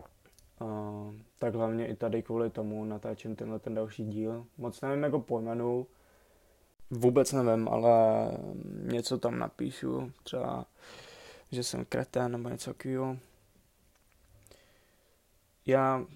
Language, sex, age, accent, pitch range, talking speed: Czech, male, 20-39, native, 115-125 Hz, 110 wpm